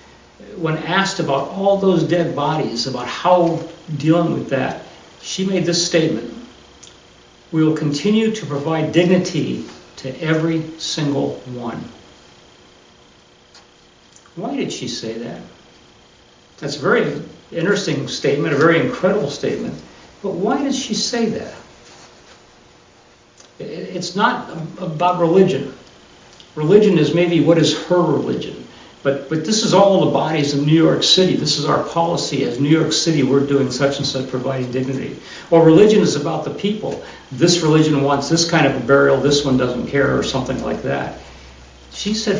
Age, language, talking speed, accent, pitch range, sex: 60-79, English, 150 wpm, American, 135-175 Hz, male